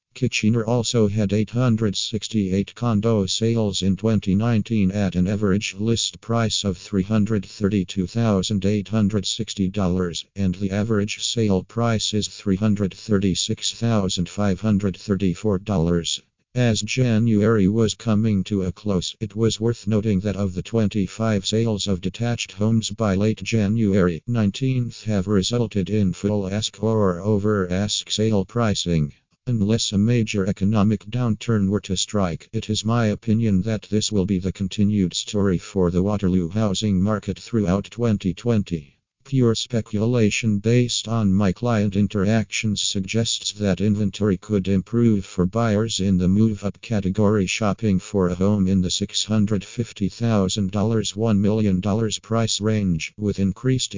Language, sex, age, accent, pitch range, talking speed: English, male, 50-69, American, 95-110 Hz, 125 wpm